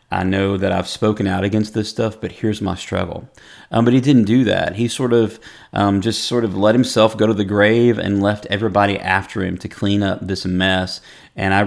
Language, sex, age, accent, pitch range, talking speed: English, male, 30-49, American, 100-115 Hz, 220 wpm